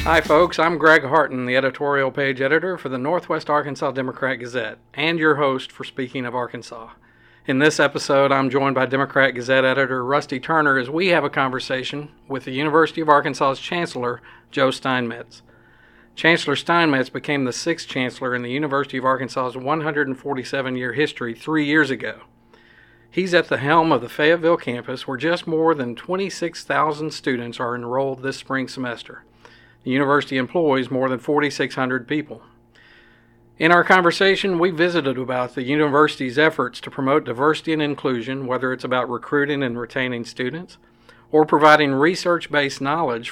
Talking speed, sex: 155 wpm, male